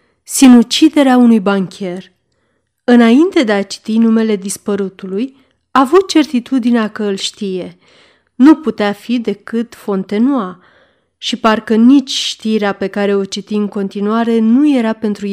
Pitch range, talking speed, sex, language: 205-250 Hz, 130 wpm, female, Romanian